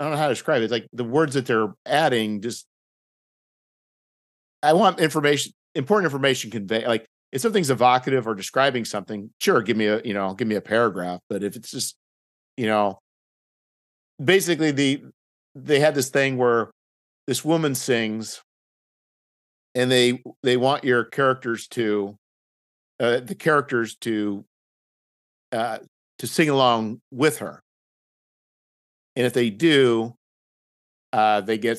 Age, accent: 50-69, American